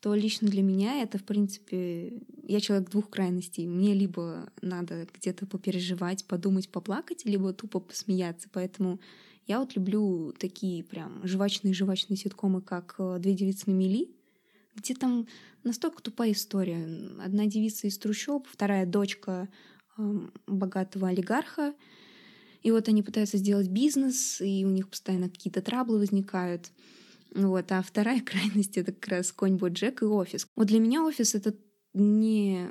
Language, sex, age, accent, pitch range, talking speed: Russian, female, 20-39, native, 190-215 Hz, 140 wpm